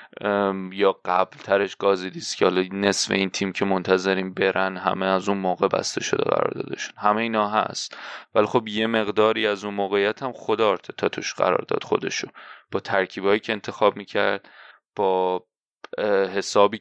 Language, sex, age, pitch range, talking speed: Persian, male, 20-39, 95-105 Hz, 160 wpm